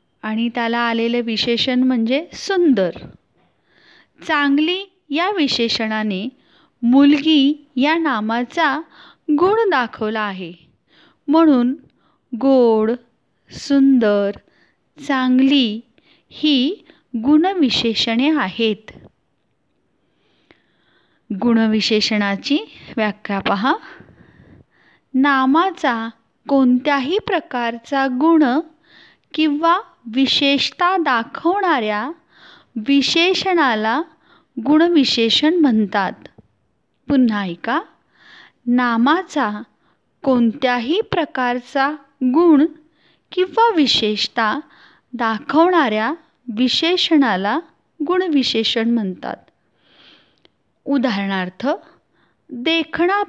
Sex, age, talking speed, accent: female, 30-49, 55 wpm, native